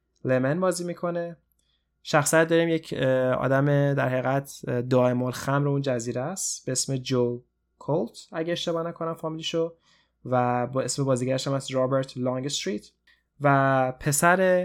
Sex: male